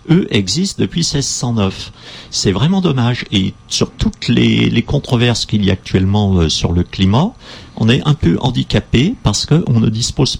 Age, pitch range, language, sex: 50-69, 95-125 Hz, French, male